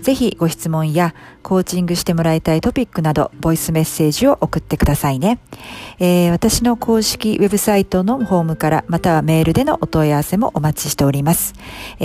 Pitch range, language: 155-185 Hz, Japanese